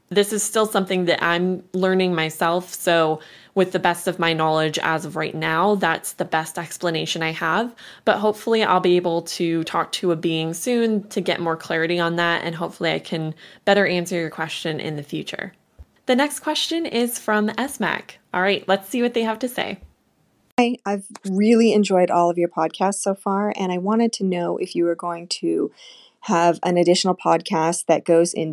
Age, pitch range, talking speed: 20-39, 160-200 Hz, 200 wpm